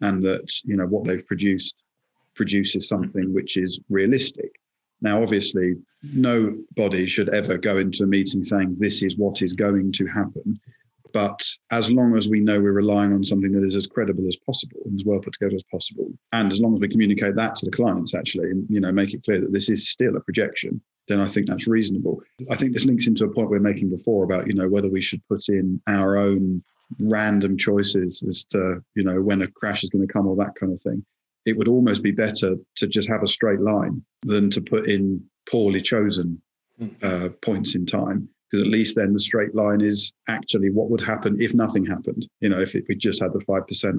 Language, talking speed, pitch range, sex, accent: English, 225 wpm, 95-105 Hz, male, British